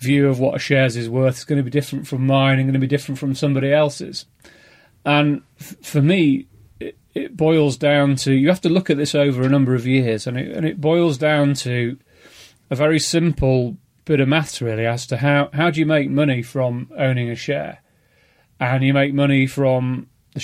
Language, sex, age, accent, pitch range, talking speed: English, male, 30-49, British, 130-150 Hz, 215 wpm